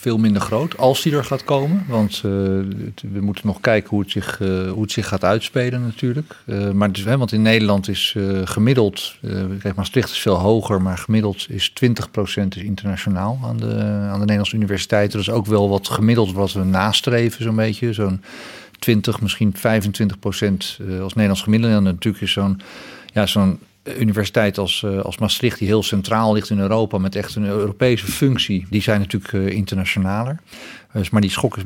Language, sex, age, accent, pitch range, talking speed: Dutch, male, 50-69, Dutch, 100-120 Hz, 195 wpm